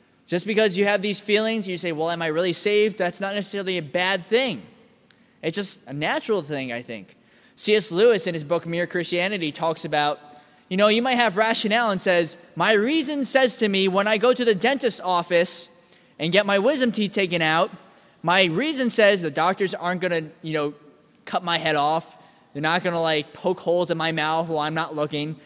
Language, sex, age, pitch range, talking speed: English, male, 20-39, 170-225 Hz, 210 wpm